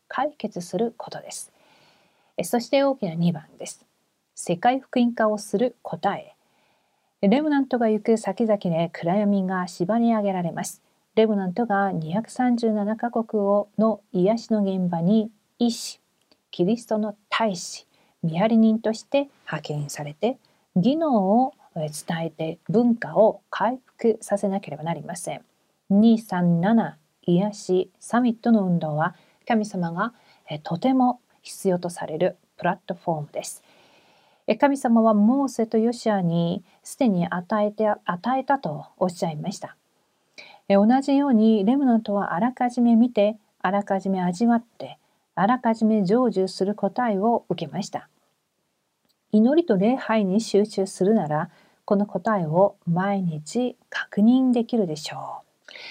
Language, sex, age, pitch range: Korean, female, 40-59, 185-230 Hz